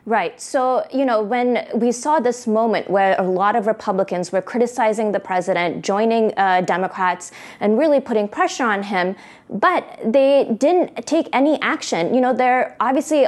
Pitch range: 195-255 Hz